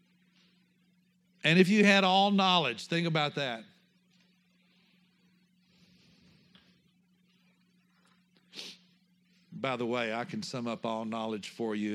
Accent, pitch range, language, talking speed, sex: American, 120-185 Hz, English, 100 wpm, male